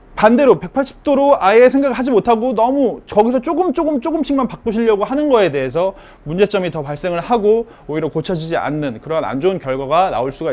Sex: male